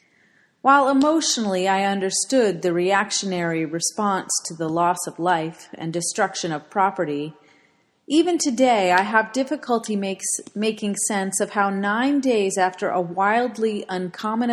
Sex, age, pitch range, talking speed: female, 30-49, 180-235 Hz, 130 wpm